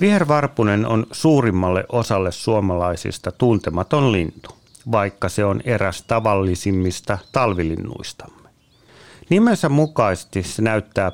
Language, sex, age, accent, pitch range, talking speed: Finnish, male, 40-59, native, 95-120 Hz, 90 wpm